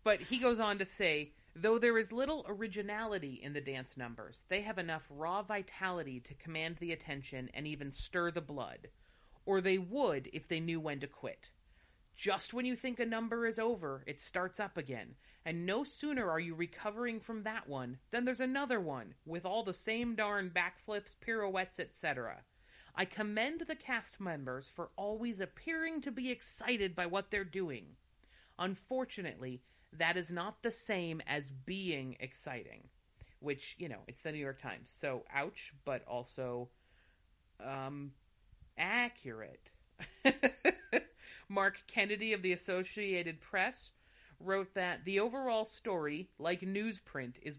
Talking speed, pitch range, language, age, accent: 155 wpm, 150-215 Hz, English, 30-49, American